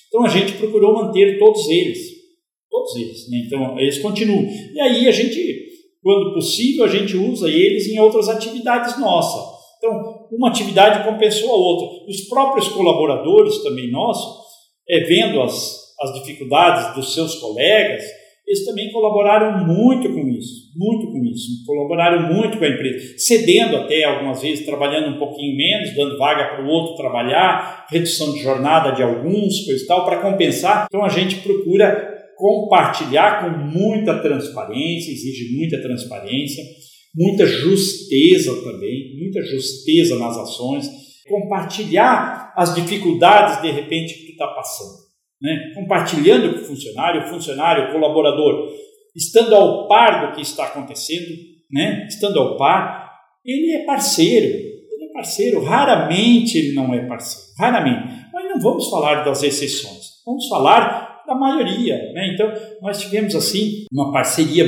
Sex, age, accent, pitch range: male, 50-69, Brazilian, 150-235 Hz